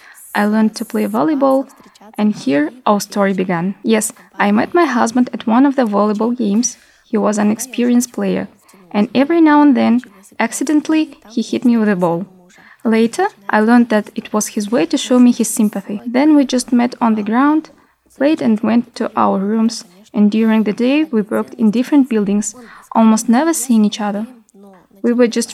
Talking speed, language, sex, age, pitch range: 190 wpm, Russian, female, 20-39, 210-255 Hz